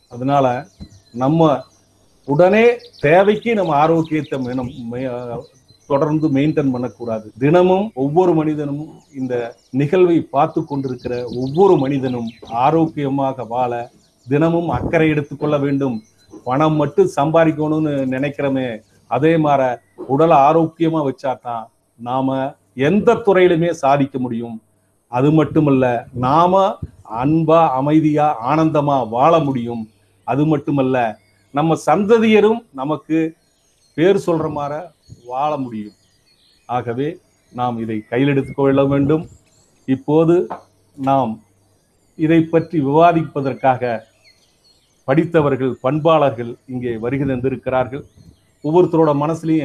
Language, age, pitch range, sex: Tamil, 40-59, 125-160 Hz, male